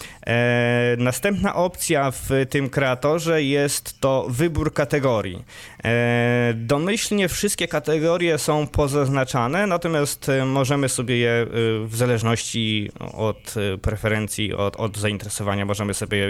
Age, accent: 20-39, native